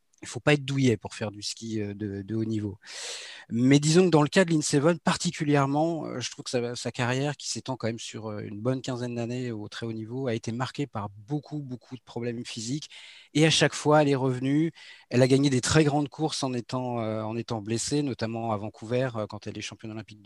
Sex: male